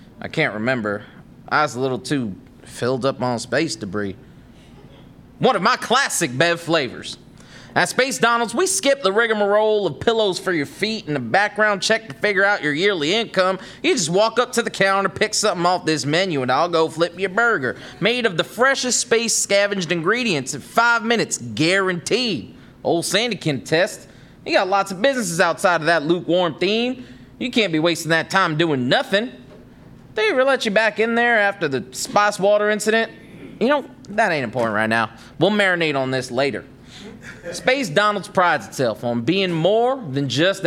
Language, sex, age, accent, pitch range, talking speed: English, male, 30-49, American, 160-225 Hz, 185 wpm